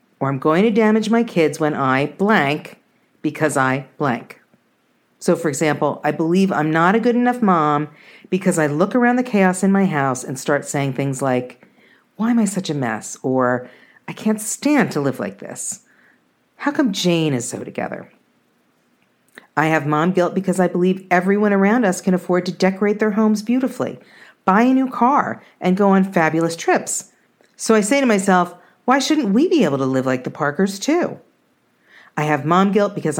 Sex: female